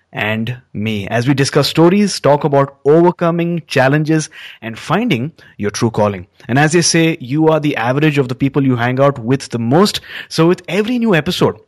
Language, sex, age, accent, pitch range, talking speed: English, male, 30-49, Indian, 120-165 Hz, 190 wpm